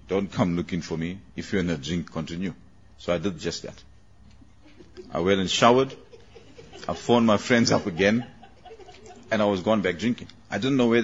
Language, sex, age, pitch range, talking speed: English, male, 50-69, 85-105 Hz, 195 wpm